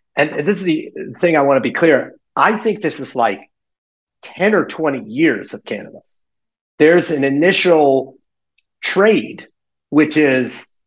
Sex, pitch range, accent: male, 120-155 Hz, American